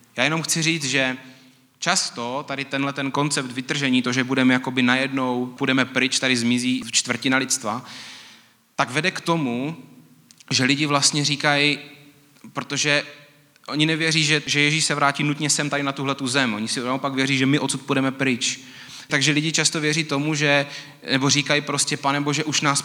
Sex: male